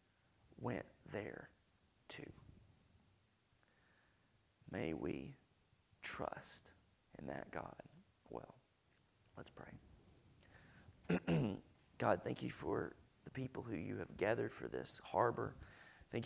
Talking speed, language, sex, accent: 95 wpm, English, male, American